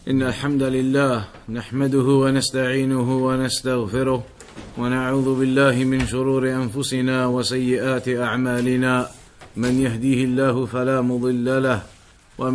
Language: English